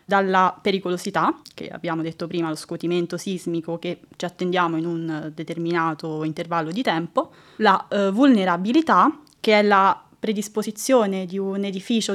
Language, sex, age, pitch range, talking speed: Italian, female, 20-39, 185-215 Hz, 135 wpm